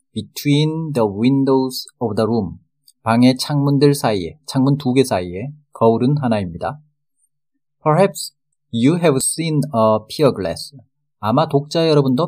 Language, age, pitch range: Korean, 40-59, 115-150 Hz